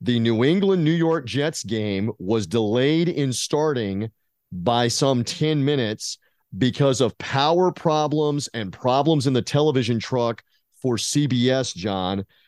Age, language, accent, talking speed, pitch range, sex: 40-59, English, American, 130 wpm, 115-145 Hz, male